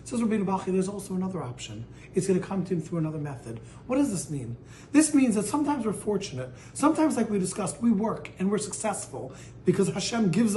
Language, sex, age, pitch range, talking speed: English, male, 30-49, 140-195 Hz, 200 wpm